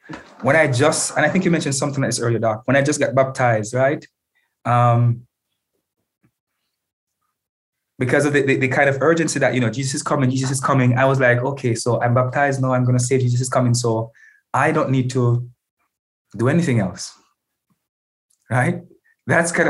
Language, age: English, 20-39